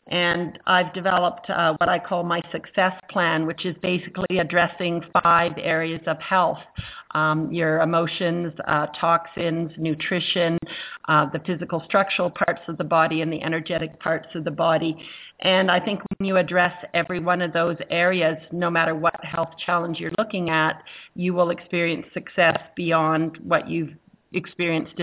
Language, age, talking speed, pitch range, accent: English, 50-69, 160 wpm, 165-185 Hz, American